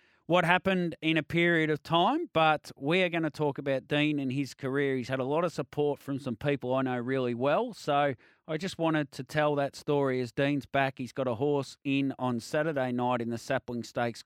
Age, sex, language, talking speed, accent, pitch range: 30-49, male, English, 225 wpm, Australian, 120-150 Hz